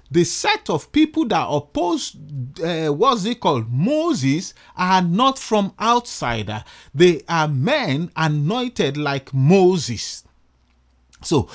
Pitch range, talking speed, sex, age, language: 145-225 Hz, 115 wpm, male, 40-59, English